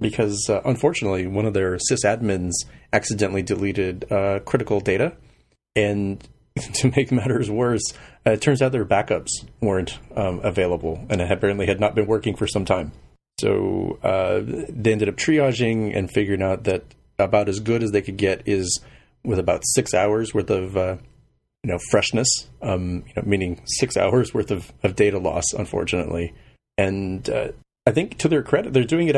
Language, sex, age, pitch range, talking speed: English, male, 30-49, 95-115 Hz, 175 wpm